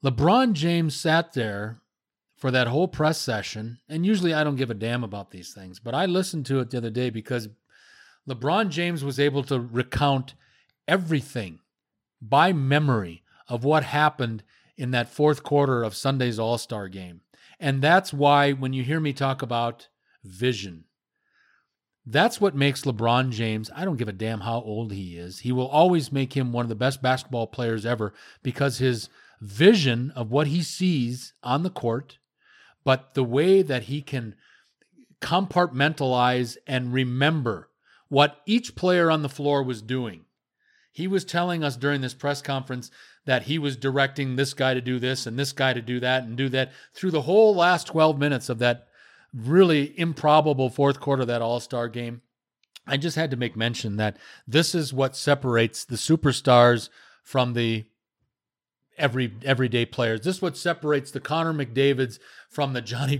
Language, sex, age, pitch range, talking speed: English, male, 40-59, 120-150 Hz, 170 wpm